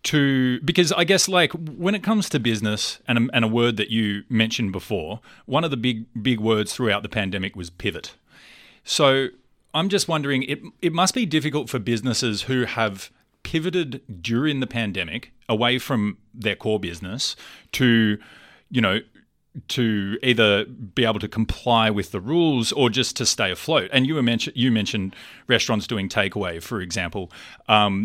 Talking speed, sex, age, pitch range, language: 170 wpm, male, 30-49, 105-130 Hz, English